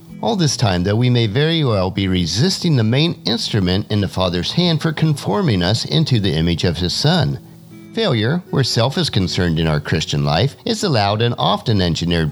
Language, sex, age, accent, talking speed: English, male, 50-69, American, 195 wpm